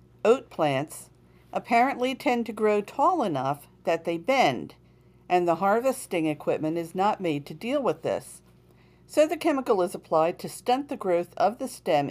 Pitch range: 155-225 Hz